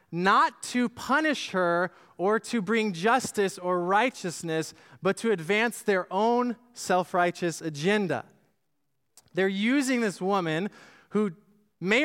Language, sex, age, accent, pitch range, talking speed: English, male, 20-39, American, 125-180 Hz, 115 wpm